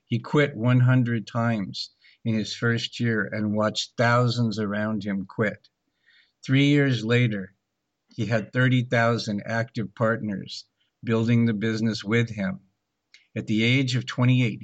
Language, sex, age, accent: English, male, 50-69, American